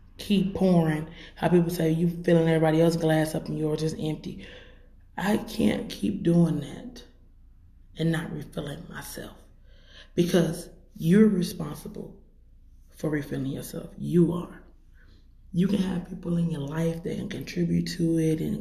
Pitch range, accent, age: 155-180 Hz, American, 20-39